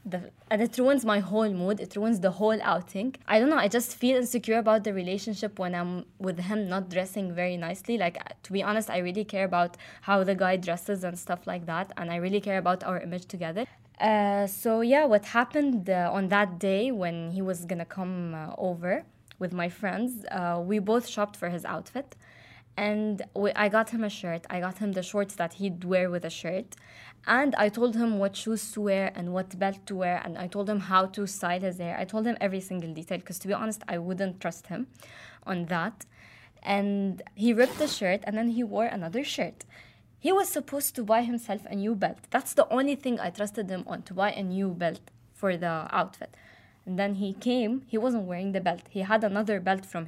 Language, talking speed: English, 220 wpm